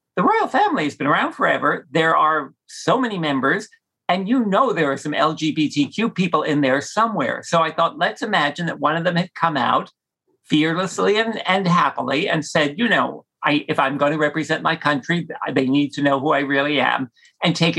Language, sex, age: English, male, 50-69